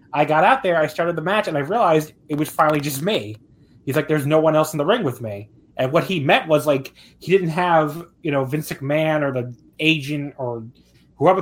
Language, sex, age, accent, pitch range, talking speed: English, male, 30-49, American, 125-160 Hz, 235 wpm